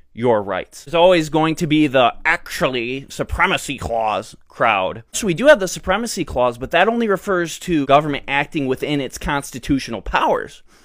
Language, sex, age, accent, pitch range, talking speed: English, male, 20-39, American, 130-170 Hz, 165 wpm